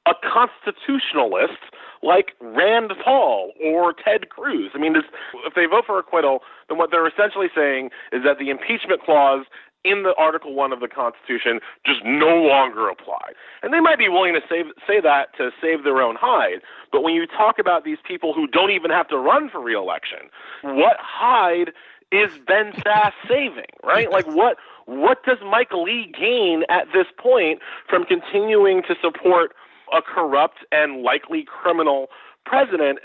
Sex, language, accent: male, English, American